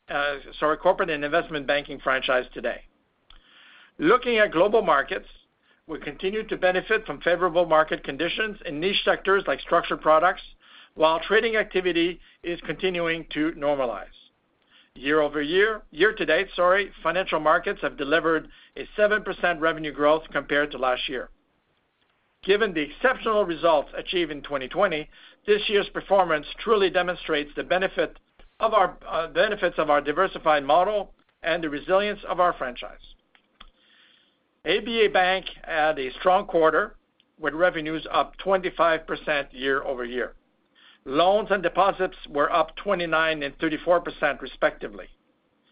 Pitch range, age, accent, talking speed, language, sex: 150-195 Hz, 50-69, American, 135 wpm, English, male